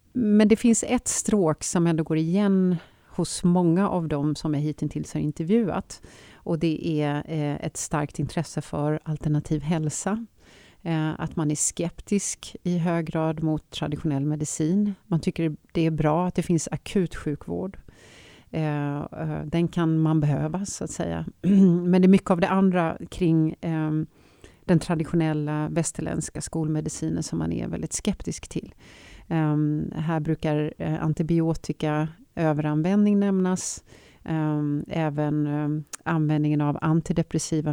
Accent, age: native, 40-59